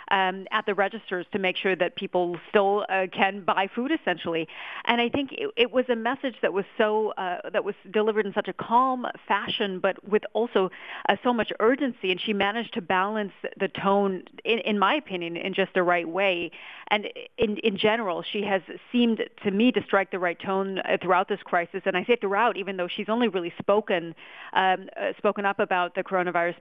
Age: 40-59